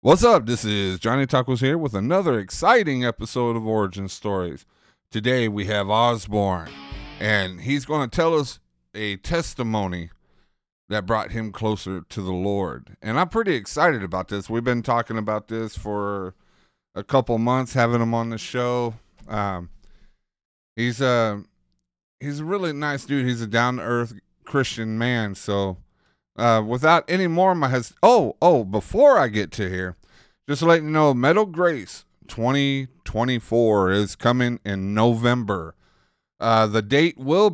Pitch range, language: 100-130 Hz, English